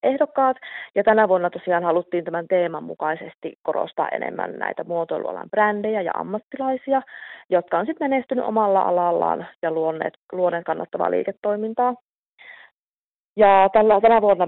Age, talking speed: 30-49, 125 wpm